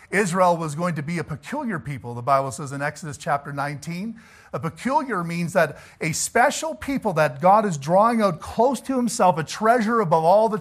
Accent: American